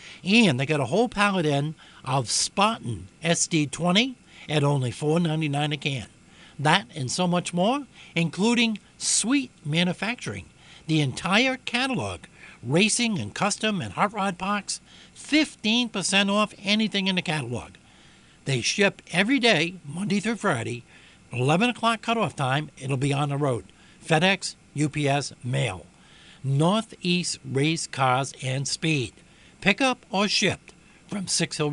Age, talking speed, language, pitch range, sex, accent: 60-79, 130 wpm, English, 135-195 Hz, male, American